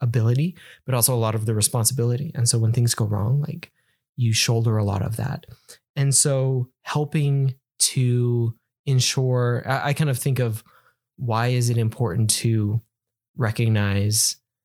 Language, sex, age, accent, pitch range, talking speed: English, male, 20-39, American, 110-130 Hz, 150 wpm